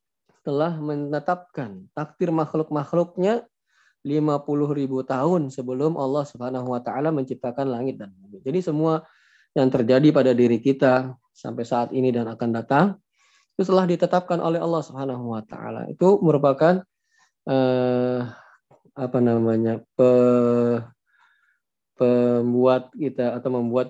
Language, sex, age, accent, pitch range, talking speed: Indonesian, male, 20-39, native, 120-155 Hz, 115 wpm